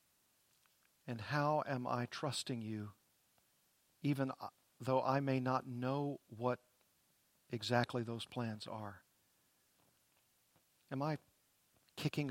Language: English